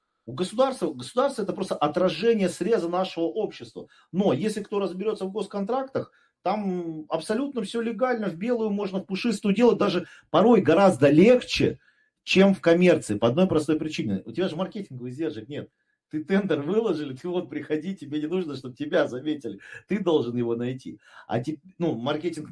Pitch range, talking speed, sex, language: 145-195 Hz, 165 wpm, male, Russian